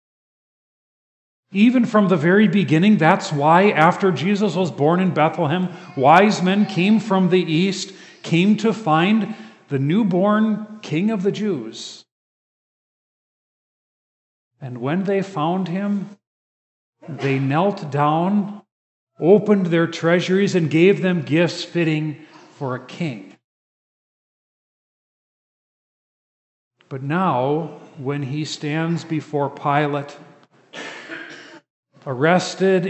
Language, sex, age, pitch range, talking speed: English, male, 40-59, 150-190 Hz, 100 wpm